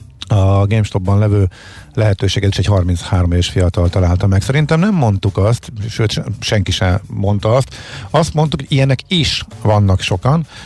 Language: Hungarian